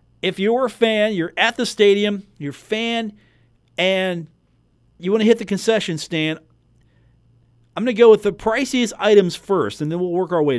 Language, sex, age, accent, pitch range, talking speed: English, male, 40-59, American, 125-205 Hz, 195 wpm